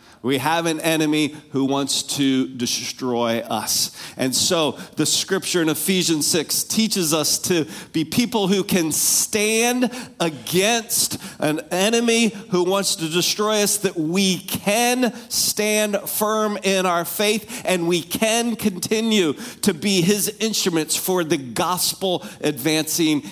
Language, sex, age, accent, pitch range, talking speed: English, male, 40-59, American, 155-195 Hz, 135 wpm